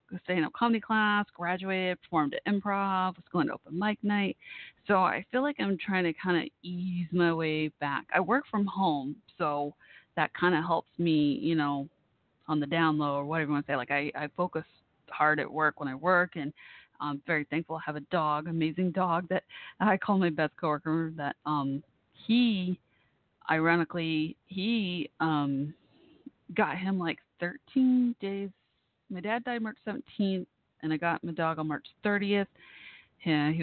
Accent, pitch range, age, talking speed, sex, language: American, 150-195 Hz, 30-49, 180 wpm, female, English